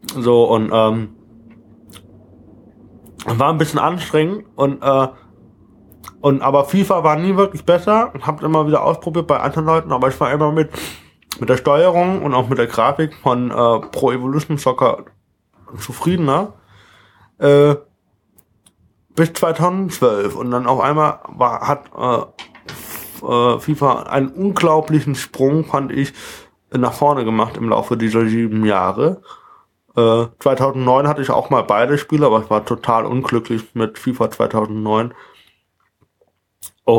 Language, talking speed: German, 135 wpm